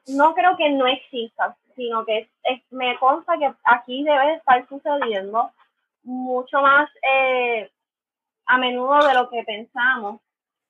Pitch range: 250-315 Hz